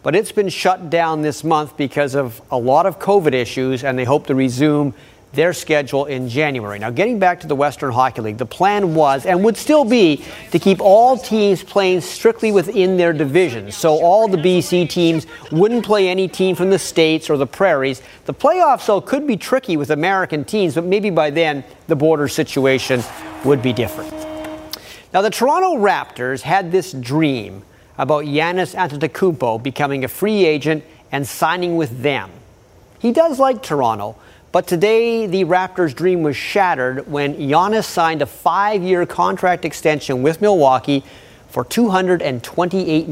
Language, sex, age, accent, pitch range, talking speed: English, male, 40-59, American, 135-185 Hz, 170 wpm